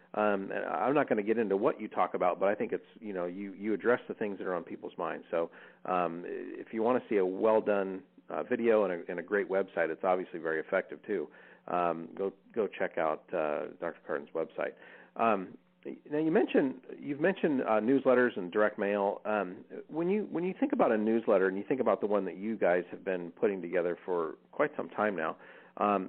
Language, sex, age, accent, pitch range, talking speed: English, male, 40-59, American, 95-140 Hz, 240 wpm